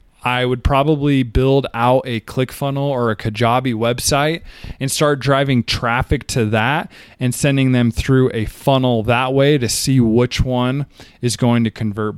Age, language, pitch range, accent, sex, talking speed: 20-39, English, 110-140 Hz, American, male, 170 wpm